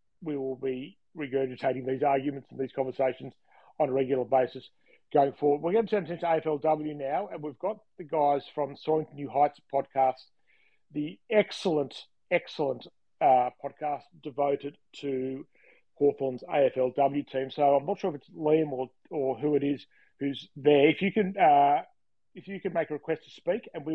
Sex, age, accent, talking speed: male, 40-59, Australian, 180 wpm